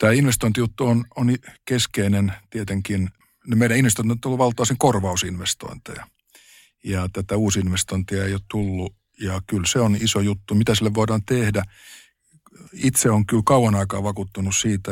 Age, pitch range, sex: 50-69, 95-115 Hz, male